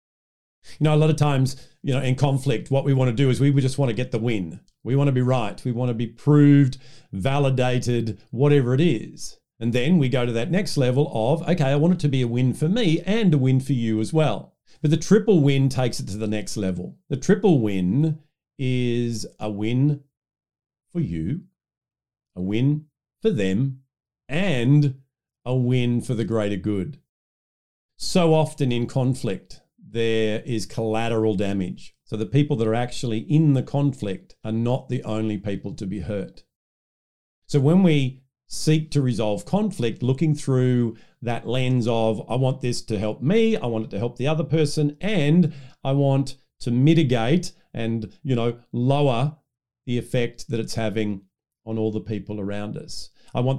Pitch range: 115-145 Hz